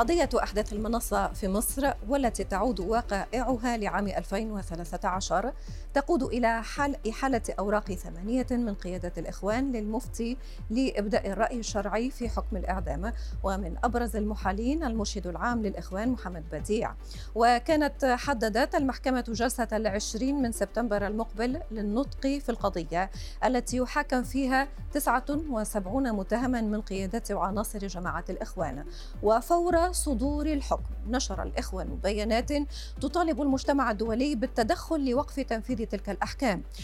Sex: female